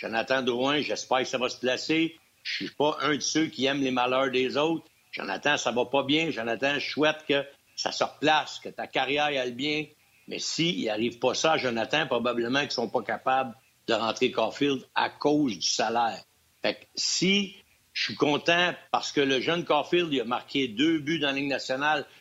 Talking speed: 210 wpm